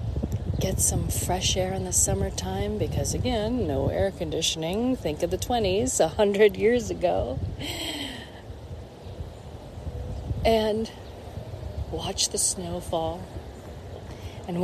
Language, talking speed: English, 105 wpm